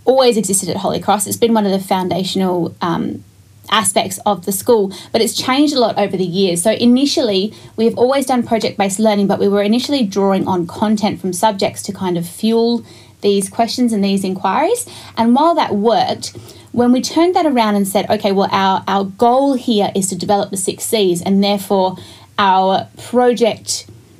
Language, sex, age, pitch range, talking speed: English, female, 20-39, 190-230 Hz, 190 wpm